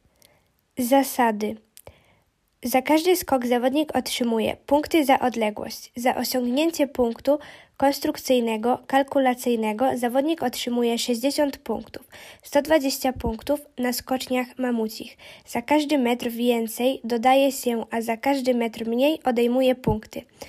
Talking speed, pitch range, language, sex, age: 105 wpm, 235-275 Hz, Polish, female, 10-29